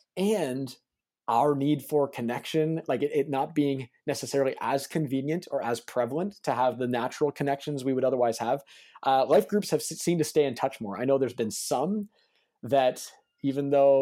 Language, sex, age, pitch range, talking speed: English, male, 20-39, 125-155 Hz, 185 wpm